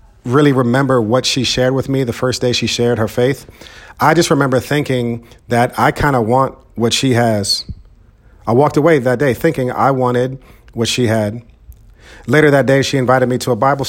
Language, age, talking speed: English, 40-59, 200 wpm